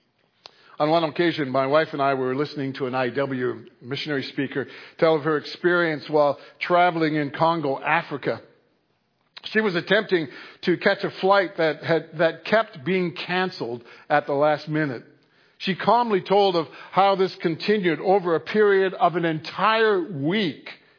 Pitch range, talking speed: 135-175 Hz, 155 wpm